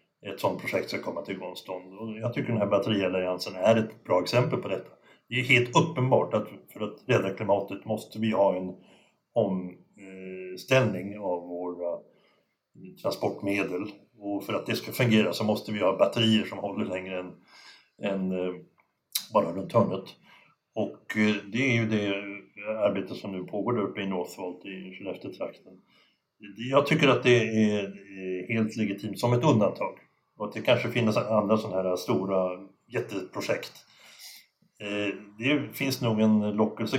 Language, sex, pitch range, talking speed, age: English, male, 95-110 Hz, 150 wpm, 60-79